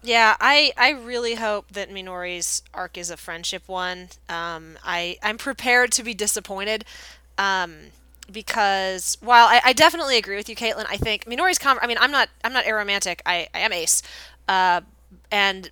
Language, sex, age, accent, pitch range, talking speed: English, female, 20-39, American, 180-230 Hz, 170 wpm